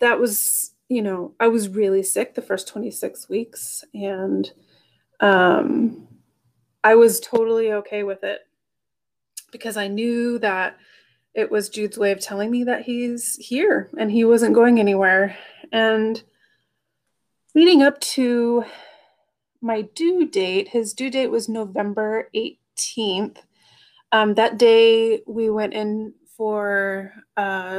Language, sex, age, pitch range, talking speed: English, female, 30-49, 205-240 Hz, 130 wpm